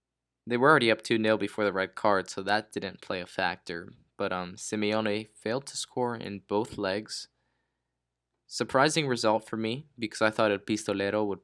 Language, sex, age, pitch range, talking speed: English, male, 10-29, 95-115 Hz, 180 wpm